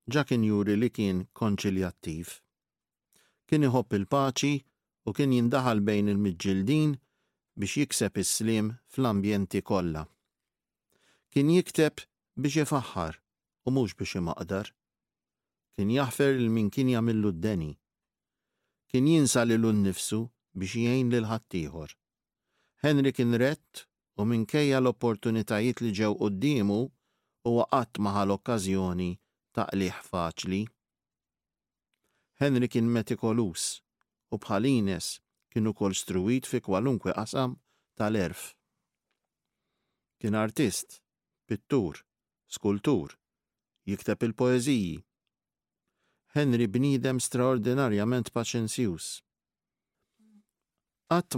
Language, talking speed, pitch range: English, 90 wpm, 100-130 Hz